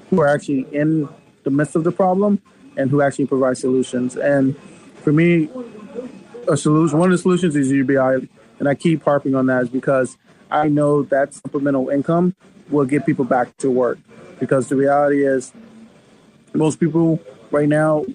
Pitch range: 130-155 Hz